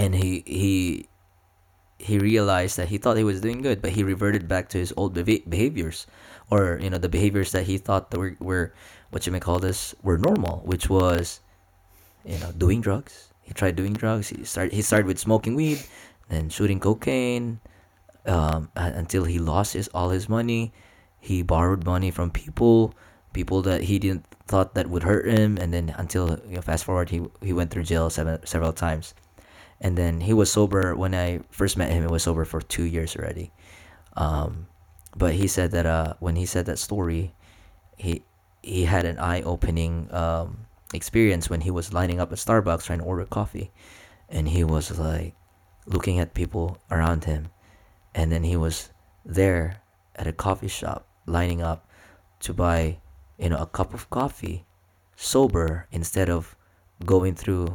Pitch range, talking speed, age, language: 85-95 Hz, 180 wpm, 20-39, Filipino